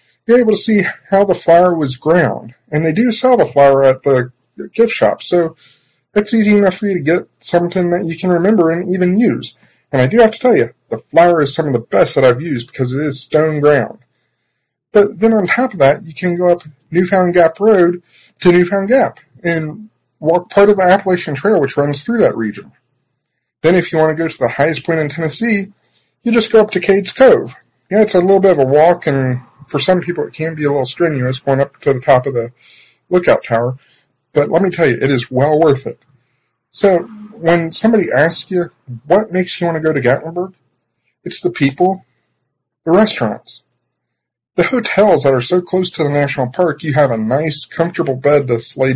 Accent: American